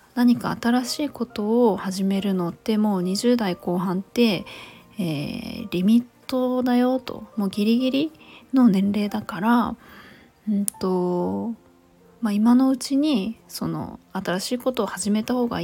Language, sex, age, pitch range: Japanese, female, 20-39, 190-245 Hz